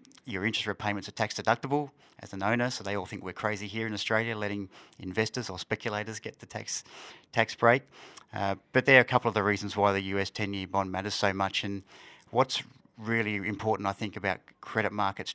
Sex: male